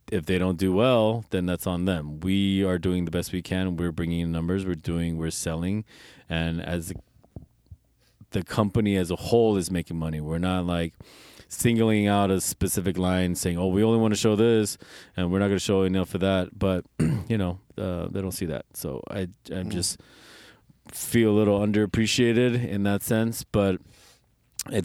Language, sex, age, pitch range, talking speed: English, male, 20-39, 90-115 Hz, 195 wpm